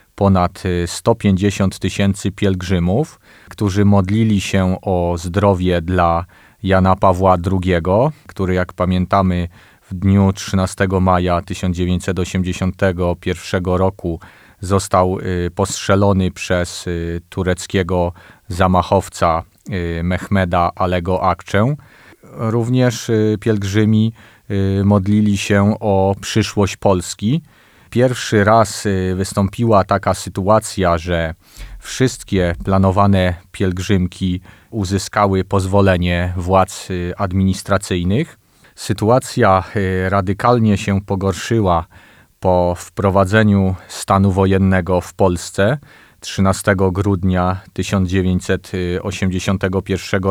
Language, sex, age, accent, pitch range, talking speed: Polish, male, 30-49, native, 90-105 Hz, 75 wpm